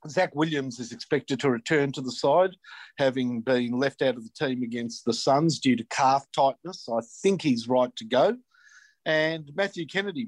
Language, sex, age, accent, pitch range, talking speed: English, male, 50-69, Australian, 125-160 Hz, 185 wpm